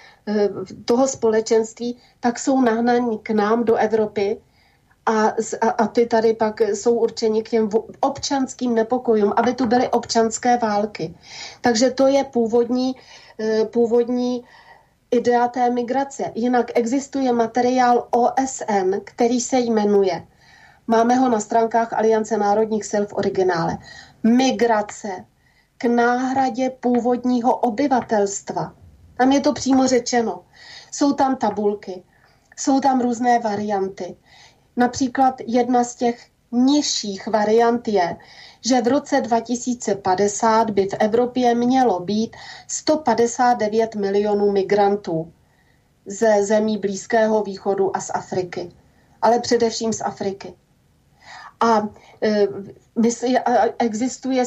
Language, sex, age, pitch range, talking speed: Slovak, female, 30-49, 215-245 Hz, 110 wpm